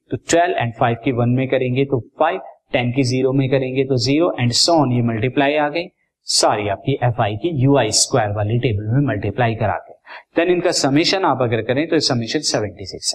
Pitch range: 120-150 Hz